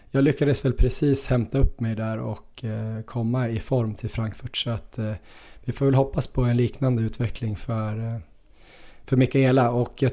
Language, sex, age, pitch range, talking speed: Swedish, male, 20-39, 110-125 Hz, 170 wpm